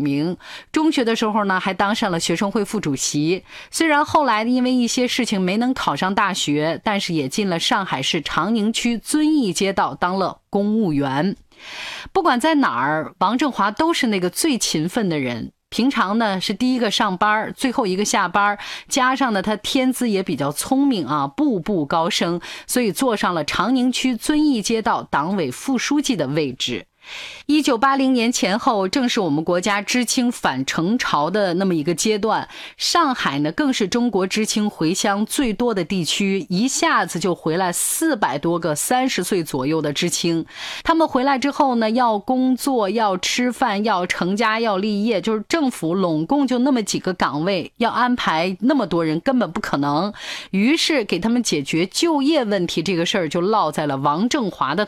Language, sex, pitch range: Chinese, female, 180-255 Hz